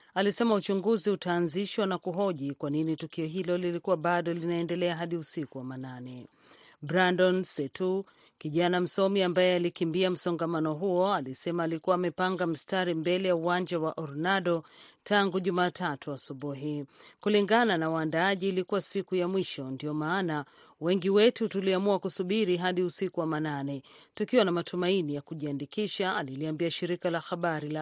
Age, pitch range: 40-59, 160-190 Hz